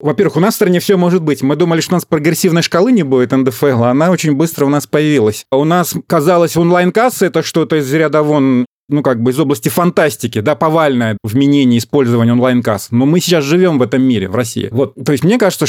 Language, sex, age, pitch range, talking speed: Russian, male, 30-49, 135-180 Hz, 230 wpm